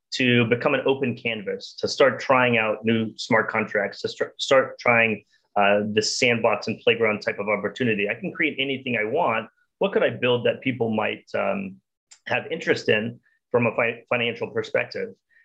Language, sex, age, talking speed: English, male, 30-49, 175 wpm